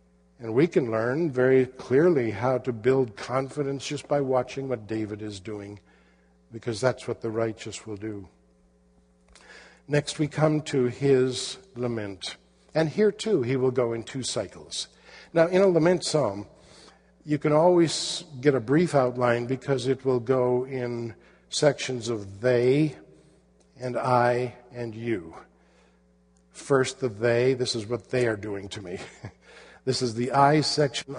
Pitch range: 105-145 Hz